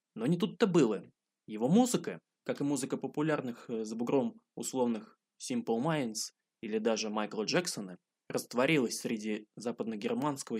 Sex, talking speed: male, 125 wpm